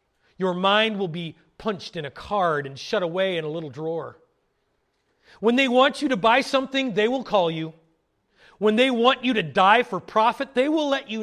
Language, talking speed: English, 205 wpm